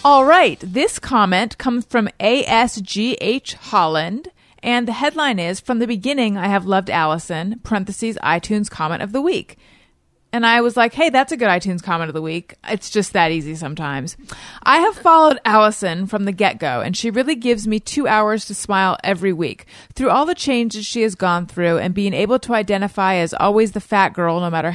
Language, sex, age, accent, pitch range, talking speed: English, female, 30-49, American, 180-245 Hz, 195 wpm